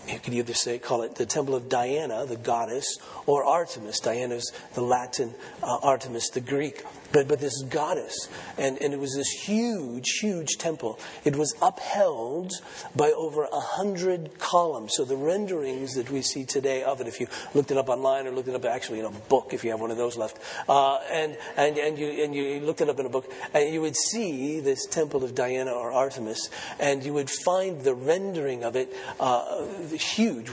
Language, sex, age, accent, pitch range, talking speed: English, male, 40-59, American, 130-160 Hz, 205 wpm